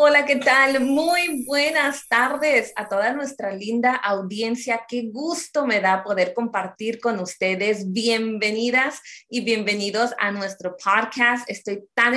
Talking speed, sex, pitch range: 135 wpm, female, 190-240 Hz